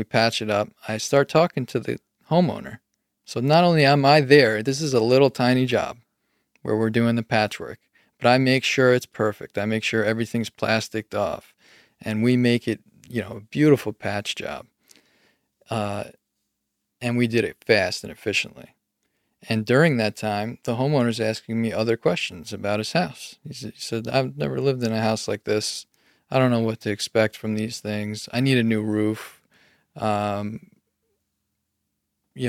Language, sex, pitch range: English, male, 110-130 Hz